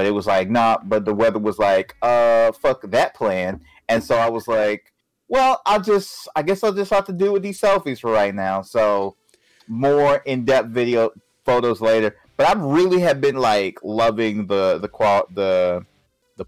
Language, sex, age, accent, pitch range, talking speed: English, male, 30-49, American, 100-120 Hz, 195 wpm